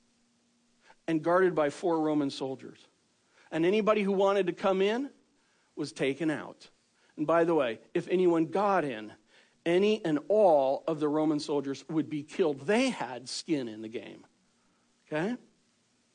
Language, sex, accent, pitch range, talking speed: English, male, American, 165-240 Hz, 150 wpm